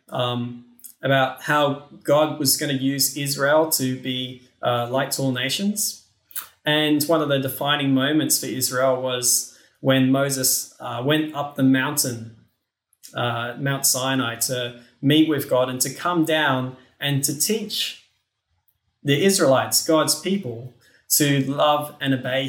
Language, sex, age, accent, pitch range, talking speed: English, male, 20-39, Australian, 125-150 Hz, 145 wpm